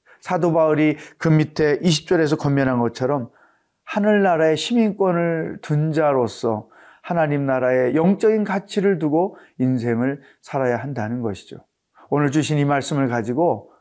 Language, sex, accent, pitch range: Korean, male, native, 130-175 Hz